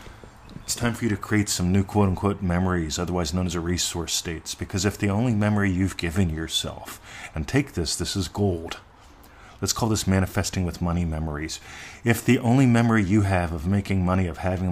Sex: male